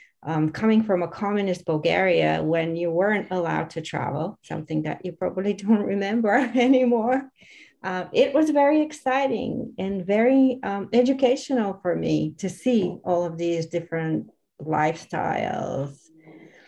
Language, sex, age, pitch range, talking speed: English, female, 40-59, 175-230 Hz, 135 wpm